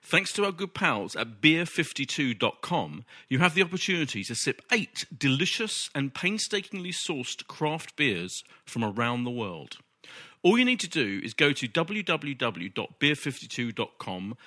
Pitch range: 120-165 Hz